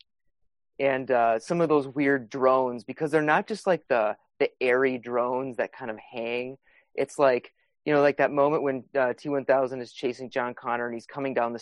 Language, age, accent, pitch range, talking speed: English, 30-49, American, 125-155 Hz, 200 wpm